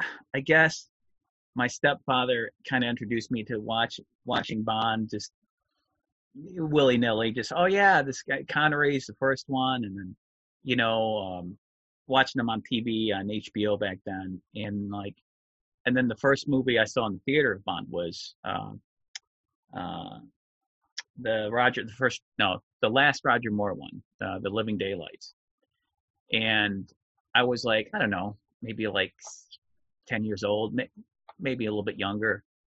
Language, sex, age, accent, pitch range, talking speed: English, male, 30-49, American, 105-135 Hz, 155 wpm